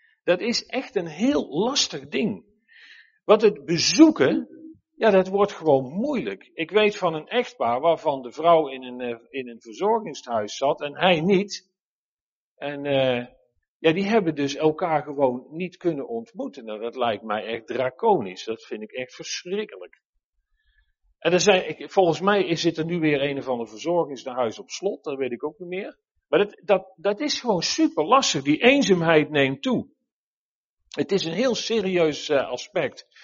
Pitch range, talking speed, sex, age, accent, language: 140-210 Hz, 170 wpm, male, 50-69, Dutch, Dutch